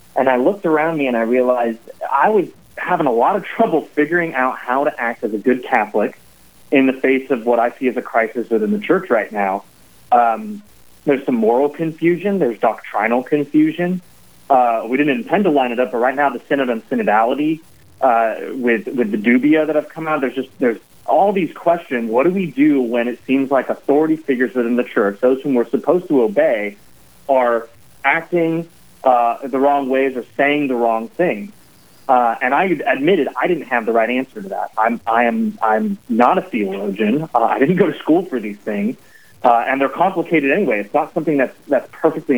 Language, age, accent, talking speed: English, 30-49, American, 210 wpm